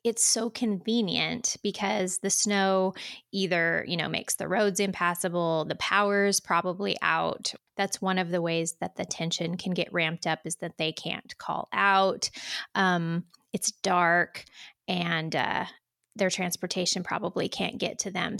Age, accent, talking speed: 20-39, American, 155 wpm